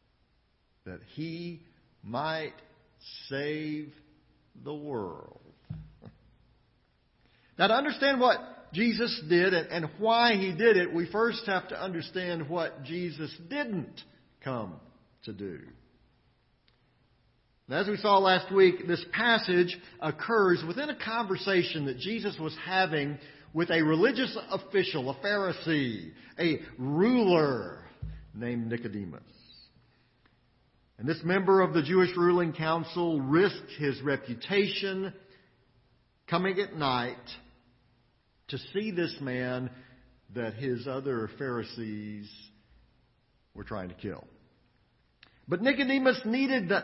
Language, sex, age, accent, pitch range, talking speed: English, male, 50-69, American, 125-195 Hz, 105 wpm